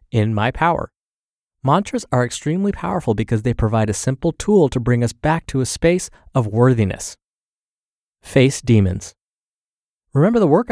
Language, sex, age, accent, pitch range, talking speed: English, male, 30-49, American, 110-150 Hz, 150 wpm